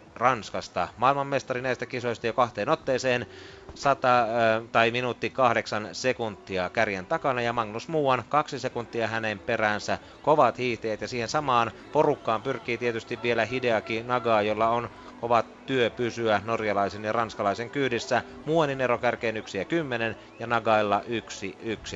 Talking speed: 135 wpm